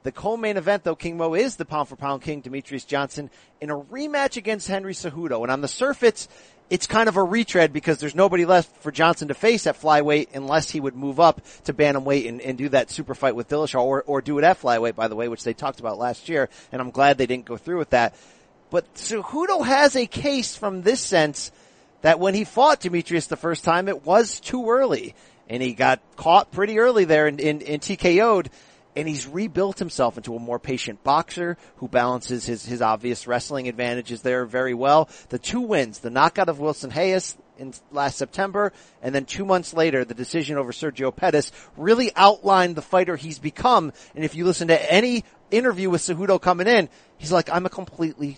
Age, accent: 40-59, American